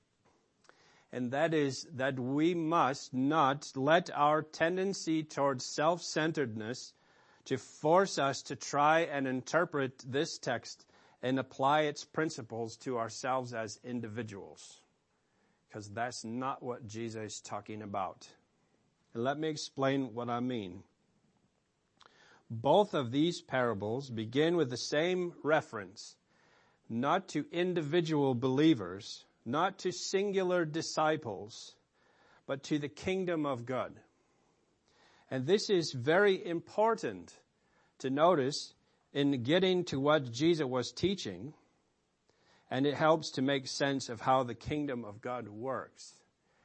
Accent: American